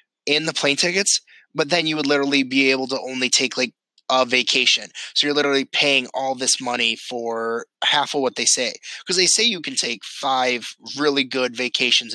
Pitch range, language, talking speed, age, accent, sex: 120-145 Hz, English, 200 wpm, 20-39, American, male